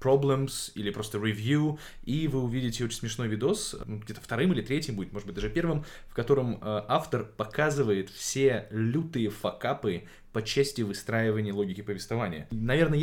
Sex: male